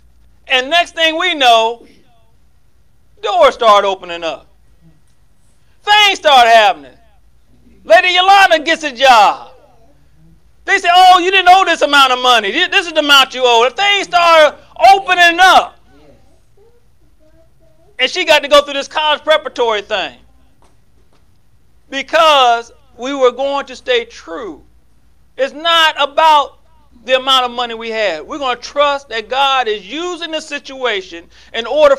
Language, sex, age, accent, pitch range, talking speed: English, male, 40-59, American, 245-345 Hz, 140 wpm